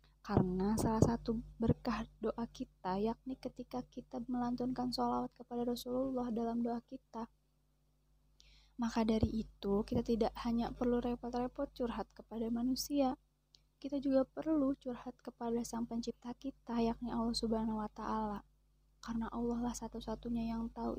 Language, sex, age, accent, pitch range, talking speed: Indonesian, female, 20-39, native, 215-245 Hz, 130 wpm